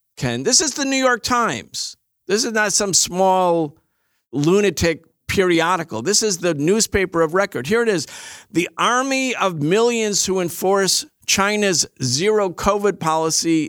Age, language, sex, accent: 50-69, English, male, American